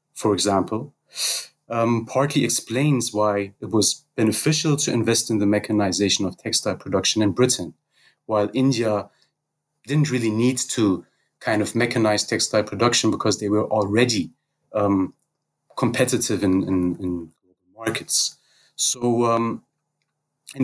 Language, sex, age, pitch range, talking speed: English, male, 30-49, 105-130 Hz, 120 wpm